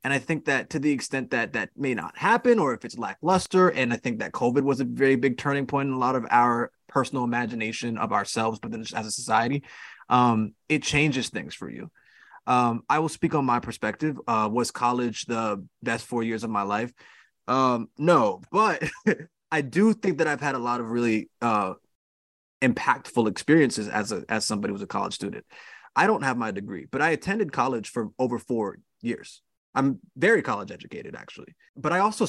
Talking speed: 205 wpm